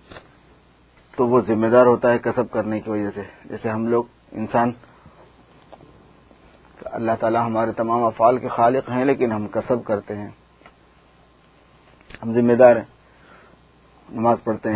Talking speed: 135 wpm